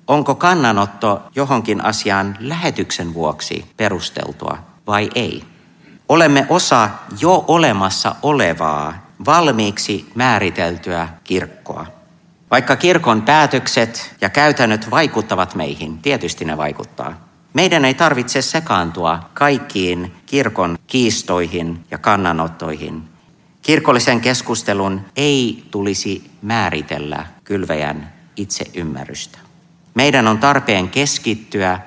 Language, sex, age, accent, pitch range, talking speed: Finnish, male, 50-69, native, 90-140 Hz, 90 wpm